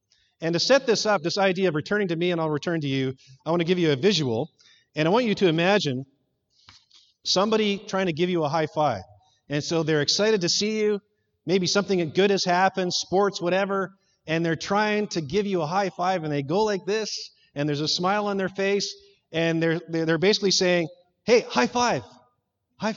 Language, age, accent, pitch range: English, 30-49, American, 145-195 Hz